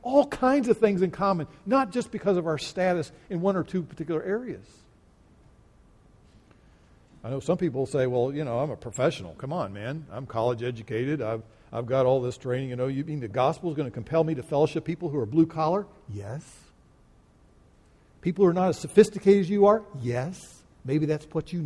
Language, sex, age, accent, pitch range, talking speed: English, male, 60-79, American, 130-190 Hz, 205 wpm